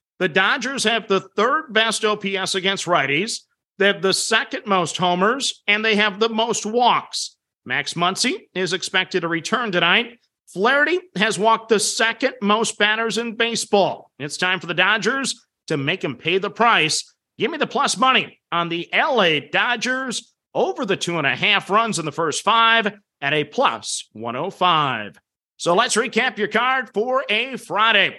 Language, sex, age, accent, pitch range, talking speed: English, male, 50-69, American, 170-230 Hz, 160 wpm